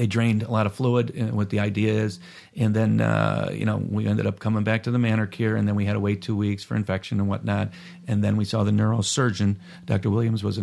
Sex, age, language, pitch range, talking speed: male, 40-59, English, 105-120 Hz, 265 wpm